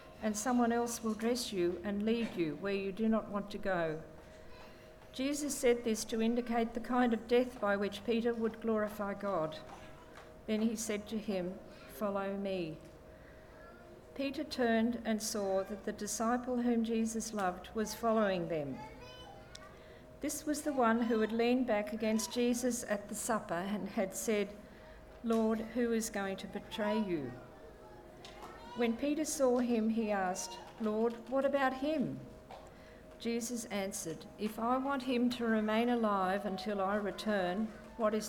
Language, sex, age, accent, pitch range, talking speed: English, female, 50-69, Australian, 200-235 Hz, 155 wpm